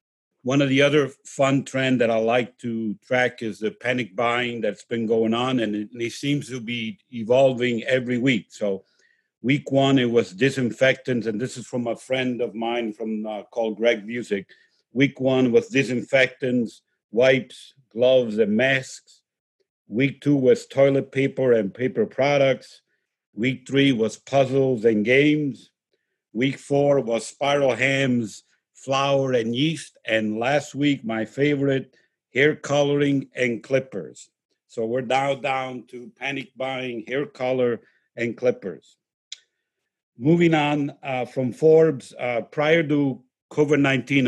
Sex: male